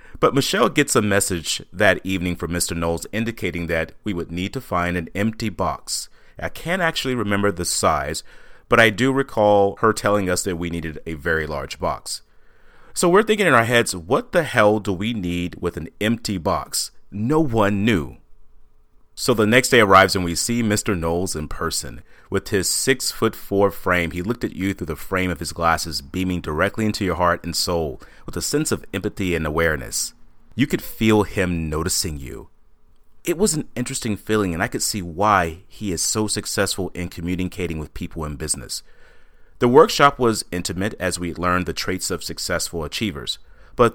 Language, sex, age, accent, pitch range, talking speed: English, male, 30-49, American, 85-110 Hz, 190 wpm